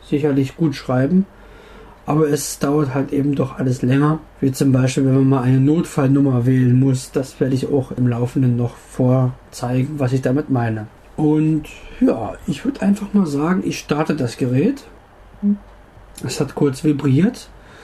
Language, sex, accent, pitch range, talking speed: German, male, German, 130-170 Hz, 160 wpm